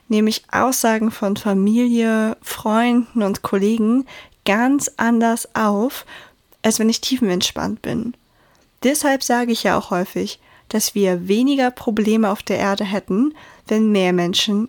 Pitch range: 200-235 Hz